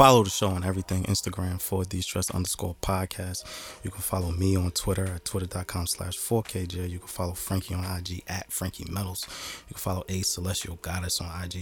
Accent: American